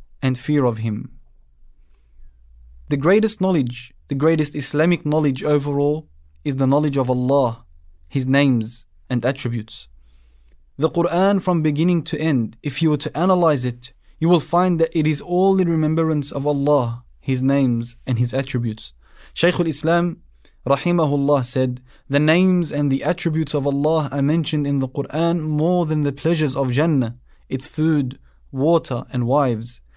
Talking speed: 150 wpm